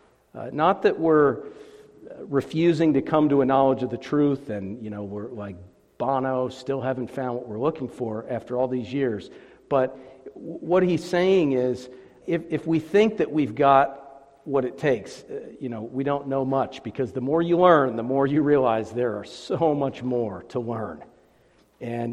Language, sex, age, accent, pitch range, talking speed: English, male, 50-69, American, 120-145 Hz, 190 wpm